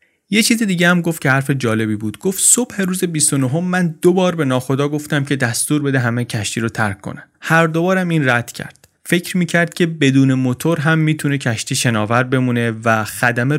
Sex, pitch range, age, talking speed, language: male, 115-155 Hz, 30-49, 205 wpm, Persian